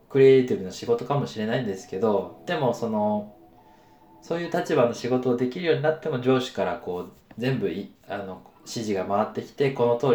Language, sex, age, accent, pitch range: Japanese, male, 20-39, native, 95-130 Hz